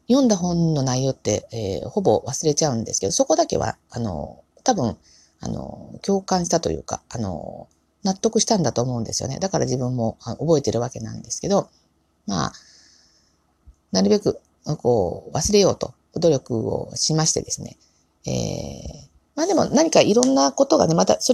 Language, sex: Japanese, female